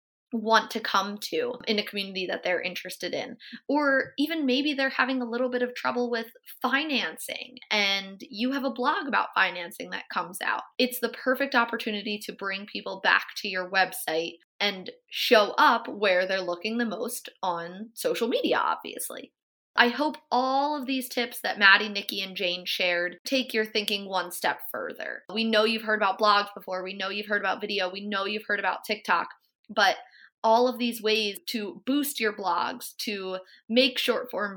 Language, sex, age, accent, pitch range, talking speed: English, female, 20-39, American, 195-250 Hz, 185 wpm